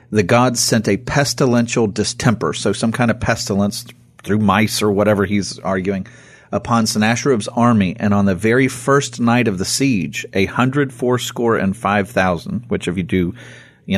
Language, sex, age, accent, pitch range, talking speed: English, male, 40-59, American, 100-120 Hz, 170 wpm